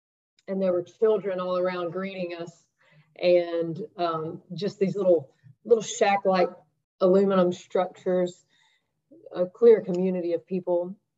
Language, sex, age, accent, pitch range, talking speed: English, female, 30-49, American, 160-185 Hz, 125 wpm